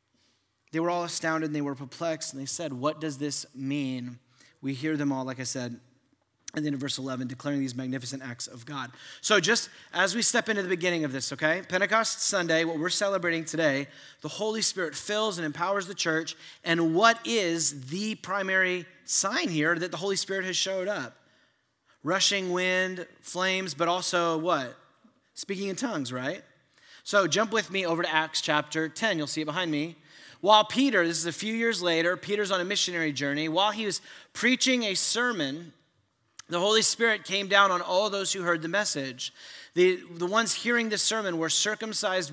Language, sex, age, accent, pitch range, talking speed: English, male, 30-49, American, 150-200 Hz, 195 wpm